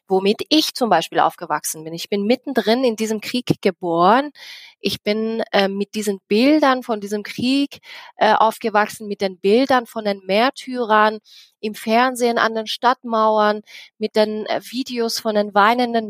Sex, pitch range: female, 190-230 Hz